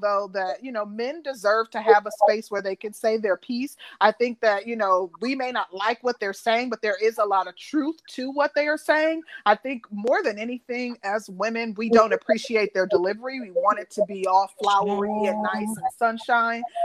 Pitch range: 200-250 Hz